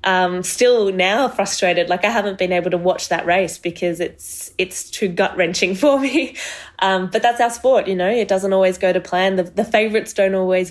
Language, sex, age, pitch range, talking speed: English, female, 20-39, 175-195 Hz, 215 wpm